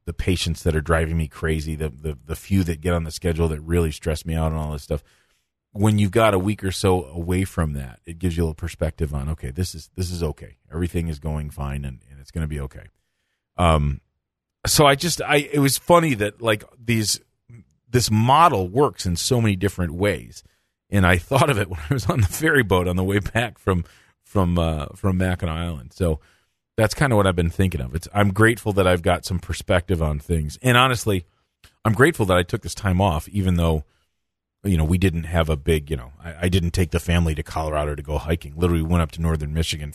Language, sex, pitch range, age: English, male, 80-95 Hz, 40-59